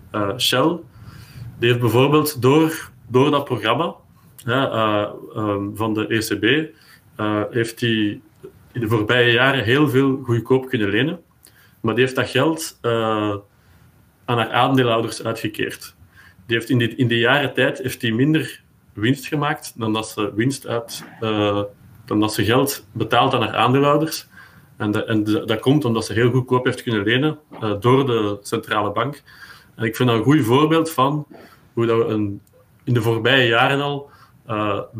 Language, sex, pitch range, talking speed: Dutch, male, 110-130 Hz, 170 wpm